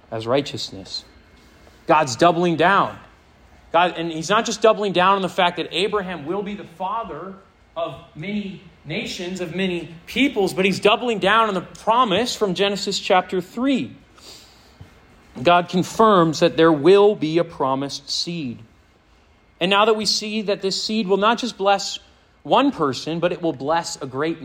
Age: 40-59